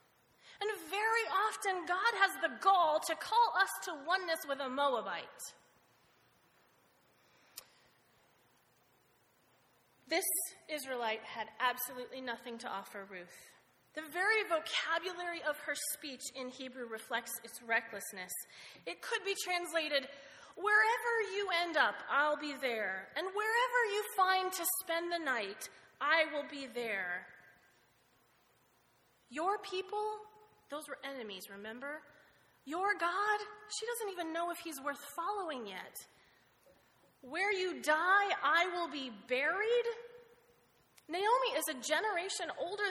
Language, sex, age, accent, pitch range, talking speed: English, female, 30-49, American, 285-400 Hz, 120 wpm